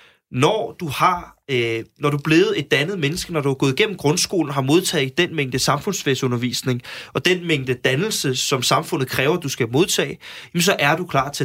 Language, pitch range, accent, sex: Danish, 135-180 Hz, native, male